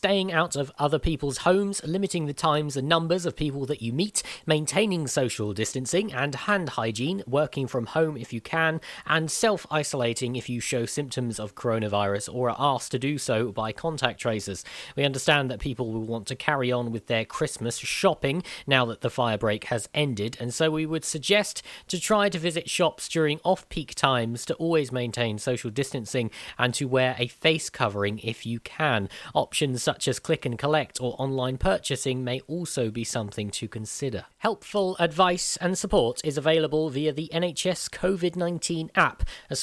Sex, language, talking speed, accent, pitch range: male, English, 180 wpm, British, 120-160 Hz